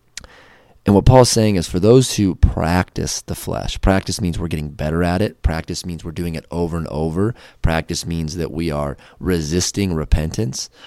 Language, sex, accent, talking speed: English, male, American, 180 wpm